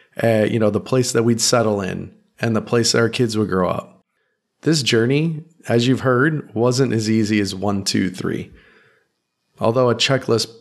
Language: English